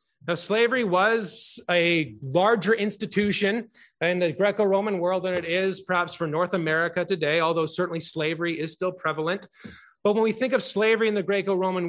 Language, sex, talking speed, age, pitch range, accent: English, male, 165 wpm, 30-49, 170-215 Hz, American